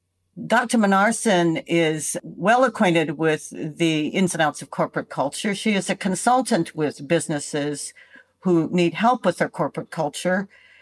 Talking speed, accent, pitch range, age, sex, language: 145 wpm, American, 160-210 Hz, 60-79, female, English